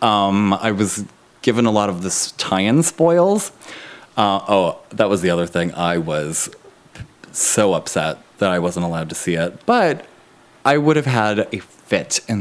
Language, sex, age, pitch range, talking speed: English, male, 20-39, 90-110 Hz, 175 wpm